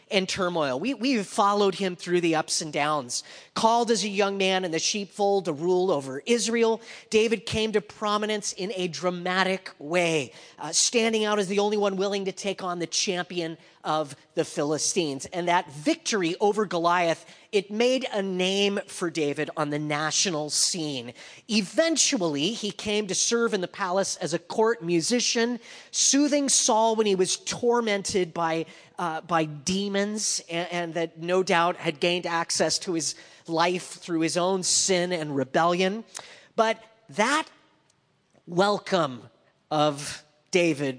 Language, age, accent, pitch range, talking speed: English, 30-49, American, 155-205 Hz, 155 wpm